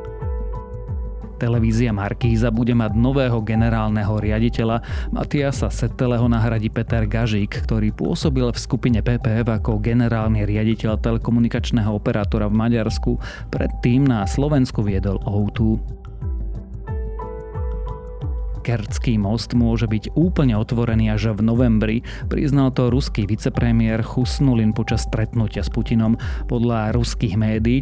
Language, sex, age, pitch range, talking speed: Slovak, male, 30-49, 110-120 Hz, 110 wpm